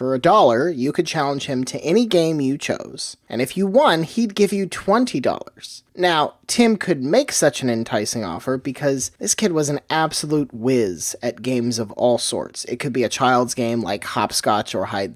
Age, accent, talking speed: 30-49, American, 200 wpm